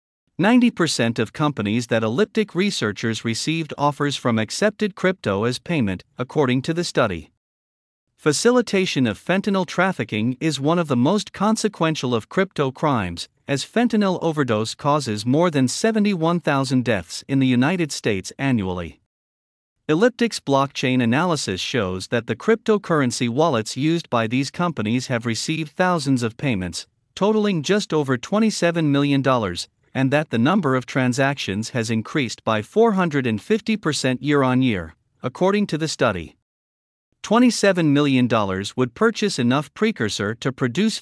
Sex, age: male, 50-69